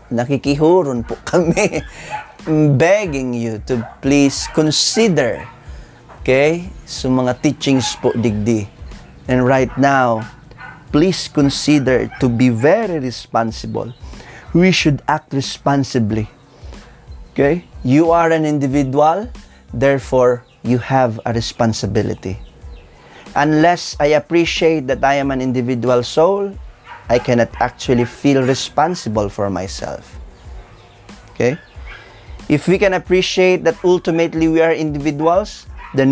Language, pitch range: Filipino, 120-160 Hz